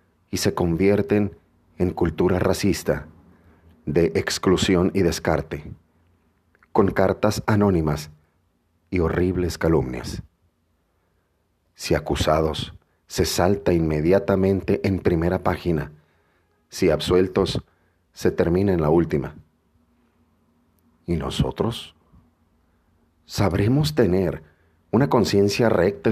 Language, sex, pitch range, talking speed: Spanish, male, 80-100 Hz, 85 wpm